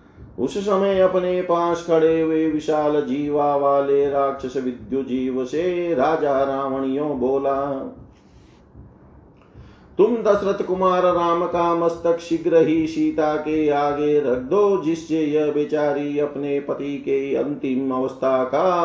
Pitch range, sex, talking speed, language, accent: 135-160 Hz, male, 120 wpm, Hindi, native